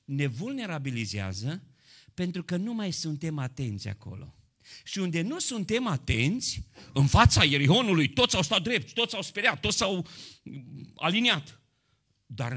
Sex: male